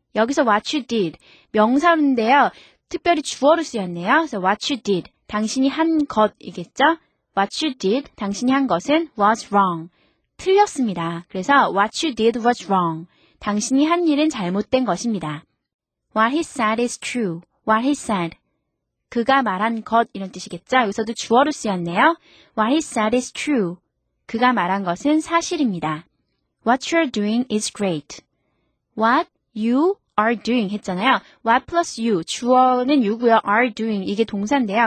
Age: 20-39